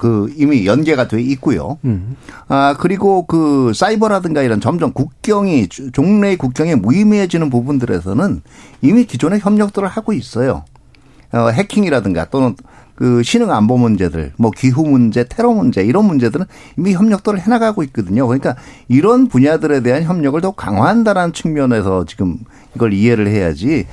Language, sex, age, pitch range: Korean, male, 50-69, 120-195 Hz